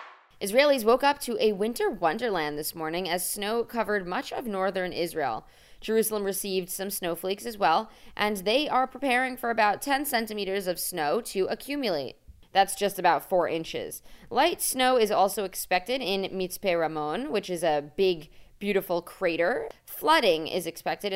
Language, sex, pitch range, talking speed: English, female, 175-225 Hz, 160 wpm